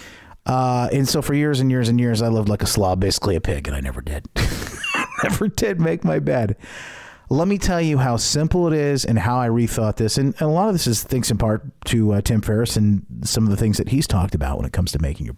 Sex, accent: male, American